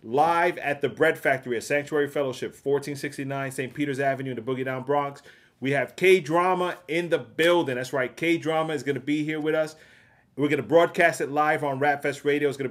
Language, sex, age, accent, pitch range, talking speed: English, male, 30-49, American, 135-155 Hz, 215 wpm